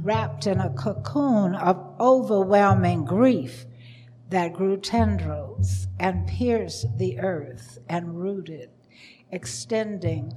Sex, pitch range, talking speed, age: female, 120-190 Hz, 100 wpm, 60-79